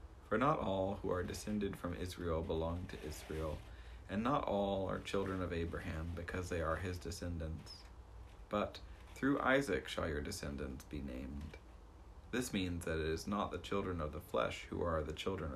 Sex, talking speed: male, 175 wpm